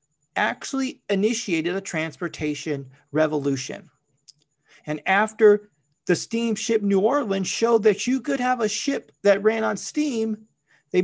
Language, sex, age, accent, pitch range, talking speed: English, male, 40-59, American, 150-225 Hz, 125 wpm